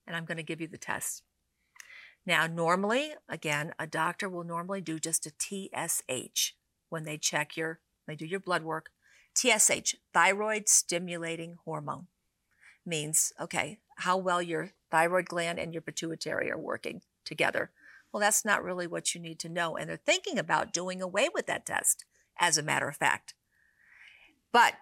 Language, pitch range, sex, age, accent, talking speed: English, 160-195 Hz, female, 50-69, American, 165 wpm